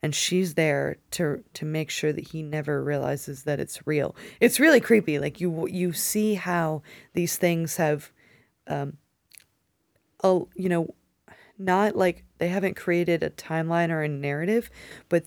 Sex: female